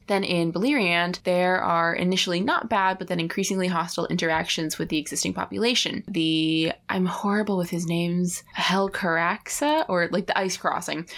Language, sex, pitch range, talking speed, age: English, female, 160-185 Hz, 155 wpm, 20-39